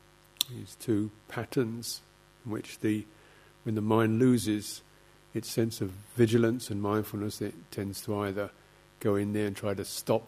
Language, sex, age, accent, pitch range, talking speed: English, male, 50-69, British, 105-120 Hz, 160 wpm